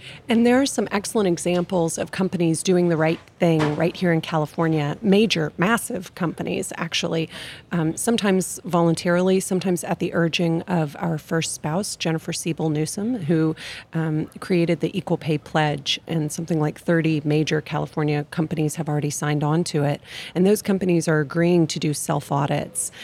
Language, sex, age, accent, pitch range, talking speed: English, female, 30-49, American, 155-175 Hz, 160 wpm